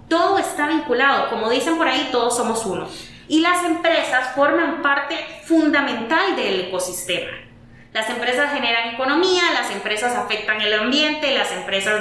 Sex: female